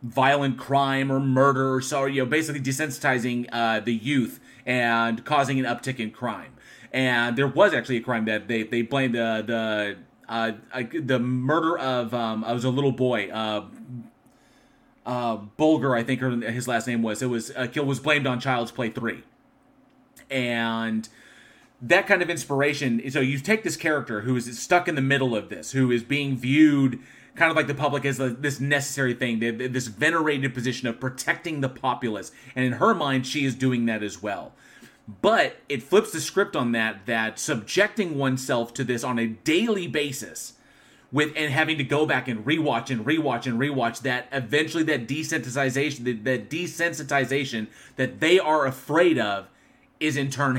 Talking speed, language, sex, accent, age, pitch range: 180 wpm, English, male, American, 30-49, 120-150 Hz